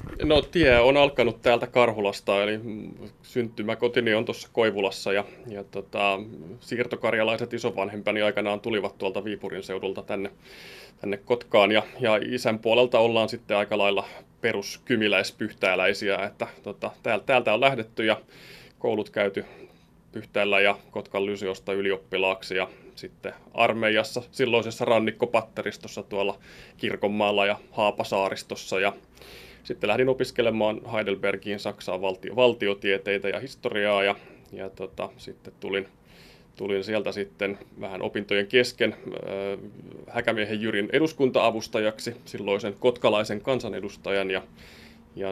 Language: Finnish